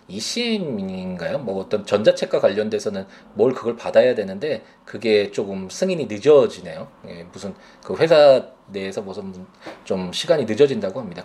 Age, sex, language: 20-39, male, Korean